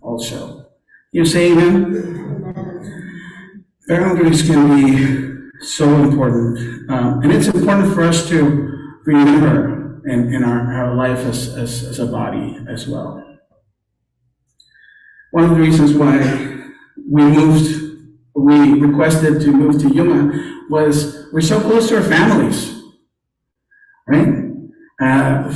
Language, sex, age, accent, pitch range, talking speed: English, male, 50-69, American, 140-175 Hz, 120 wpm